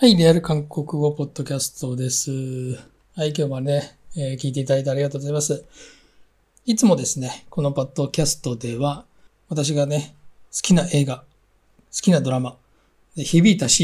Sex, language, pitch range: male, Japanese, 130-175 Hz